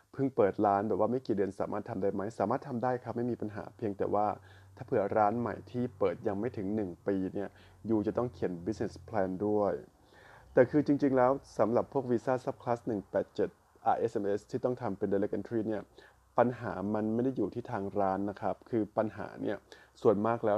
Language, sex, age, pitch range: Thai, male, 20-39, 100-120 Hz